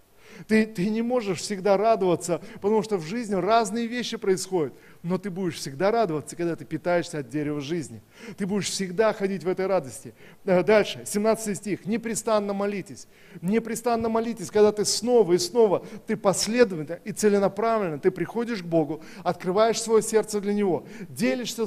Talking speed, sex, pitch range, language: 160 wpm, male, 175-215 Hz, Russian